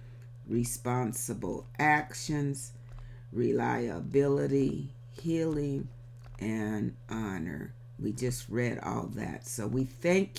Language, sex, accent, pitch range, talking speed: English, female, American, 120-135 Hz, 80 wpm